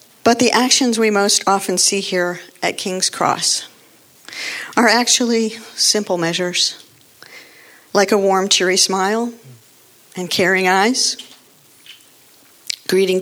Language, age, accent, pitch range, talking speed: English, 50-69, American, 185-230 Hz, 110 wpm